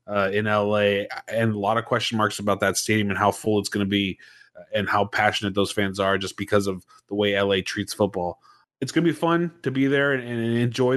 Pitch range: 100-130 Hz